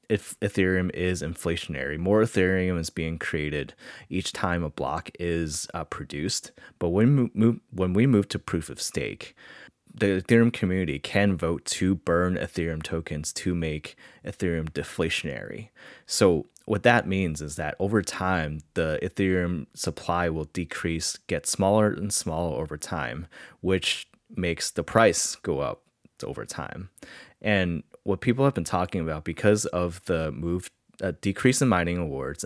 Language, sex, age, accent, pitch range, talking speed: English, male, 20-39, American, 80-100 Hz, 155 wpm